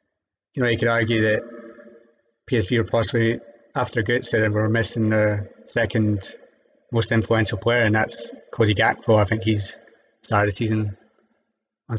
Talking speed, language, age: 155 wpm, English, 30-49